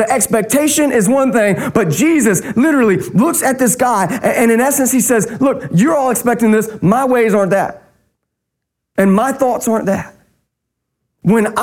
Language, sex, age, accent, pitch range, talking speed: English, male, 30-49, American, 160-235 Hz, 165 wpm